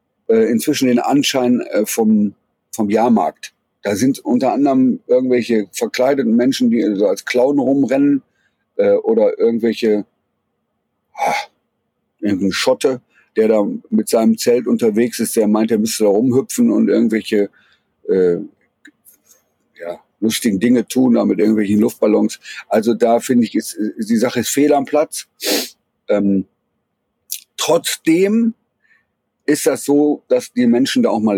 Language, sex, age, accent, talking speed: German, male, 50-69, German, 125 wpm